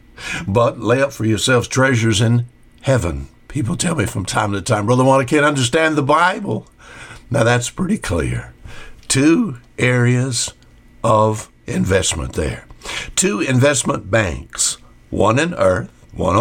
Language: English